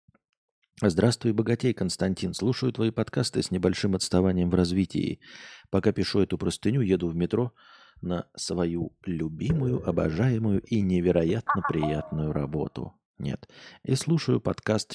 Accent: native